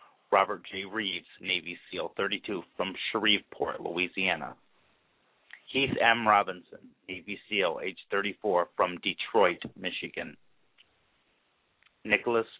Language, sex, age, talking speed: English, male, 30-49, 95 wpm